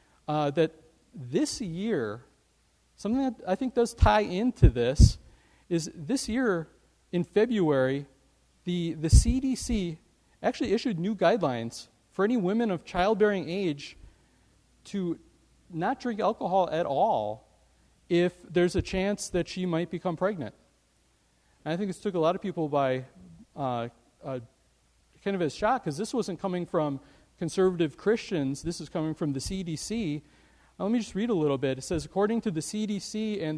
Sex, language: male, English